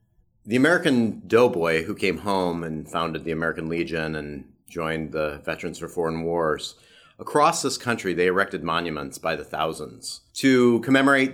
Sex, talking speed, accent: male, 155 wpm, American